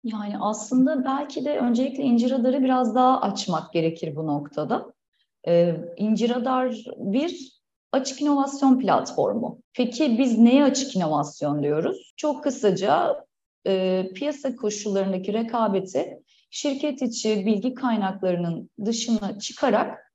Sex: female